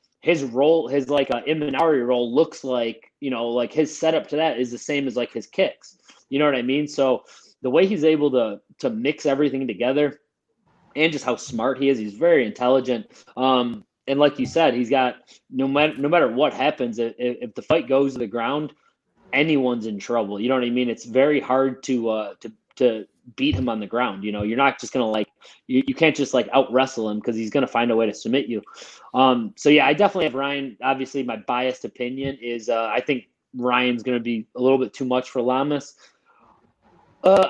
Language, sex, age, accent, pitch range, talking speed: English, male, 20-39, American, 125-145 Hz, 220 wpm